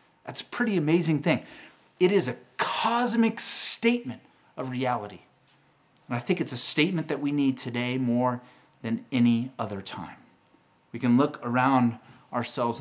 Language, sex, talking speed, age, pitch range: English, male, 150 wpm, 30-49, 130-195 Hz